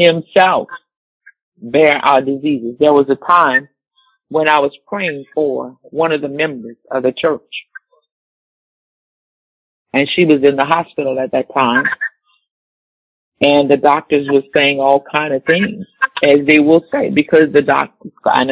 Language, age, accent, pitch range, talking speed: English, 50-69, American, 135-170 Hz, 150 wpm